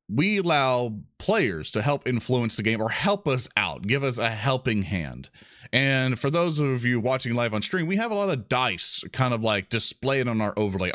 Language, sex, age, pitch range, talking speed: English, male, 30-49, 105-145 Hz, 215 wpm